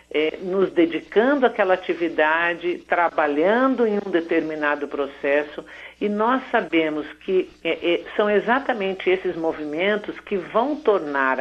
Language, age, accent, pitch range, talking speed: Portuguese, 60-79, Brazilian, 150-200 Hz, 120 wpm